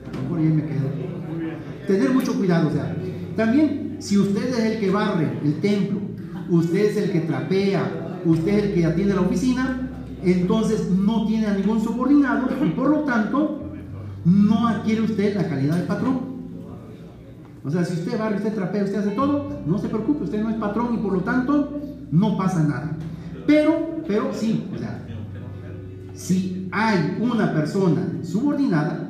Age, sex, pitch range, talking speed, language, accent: 40-59, male, 160-225 Hz, 170 wpm, Spanish, Mexican